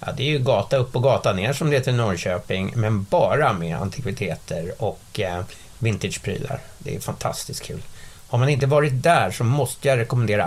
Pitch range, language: 110-140 Hz, English